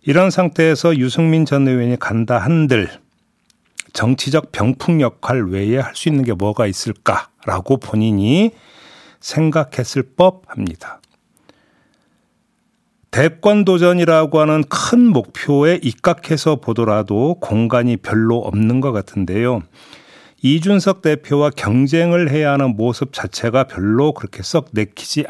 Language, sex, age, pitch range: Korean, male, 40-59, 115-160 Hz